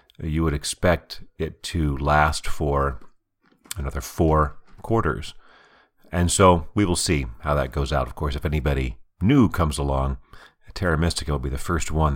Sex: male